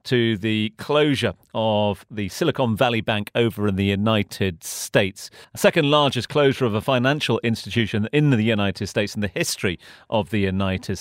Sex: male